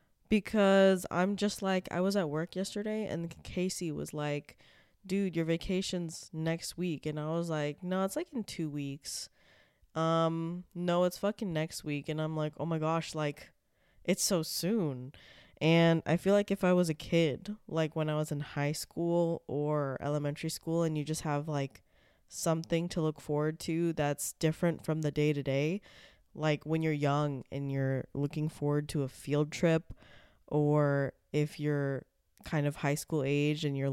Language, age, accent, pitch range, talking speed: English, 20-39, American, 145-175 Hz, 180 wpm